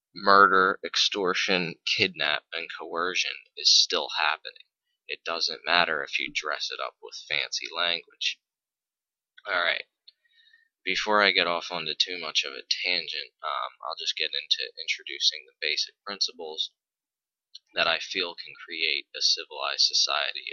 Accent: American